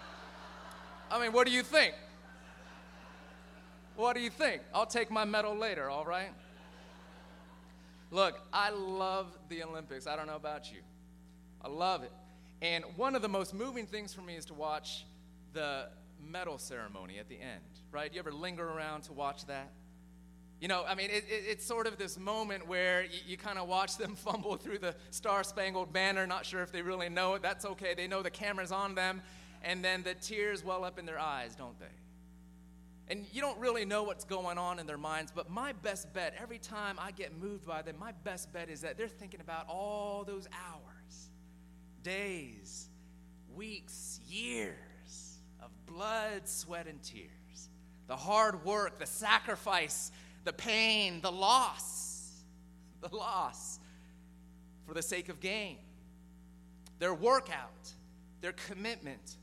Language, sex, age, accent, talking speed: English, male, 30-49, American, 165 wpm